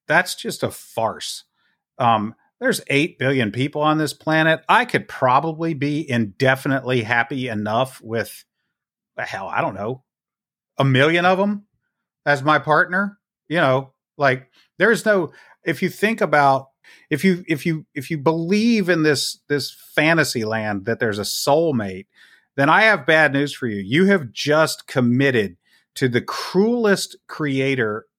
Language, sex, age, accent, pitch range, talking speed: English, male, 40-59, American, 120-160 Hz, 155 wpm